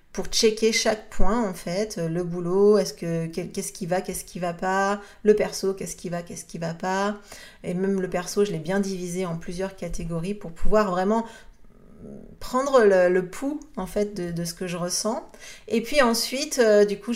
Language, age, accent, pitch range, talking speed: French, 30-49, French, 180-210 Hz, 205 wpm